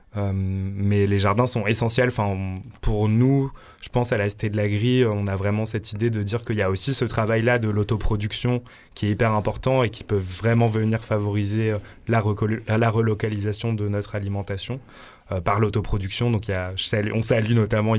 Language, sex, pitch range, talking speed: French, male, 100-115 Hz, 200 wpm